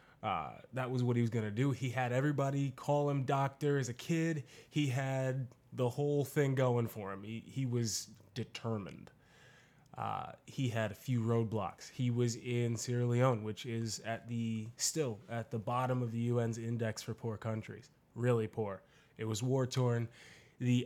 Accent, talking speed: American, 180 wpm